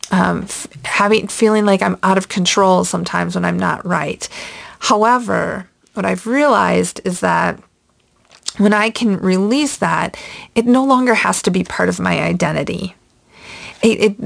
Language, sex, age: English, female, 40-59